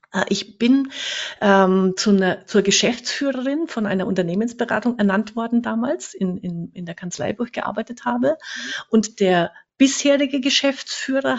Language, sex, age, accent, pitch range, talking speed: German, female, 50-69, German, 185-245 Hz, 135 wpm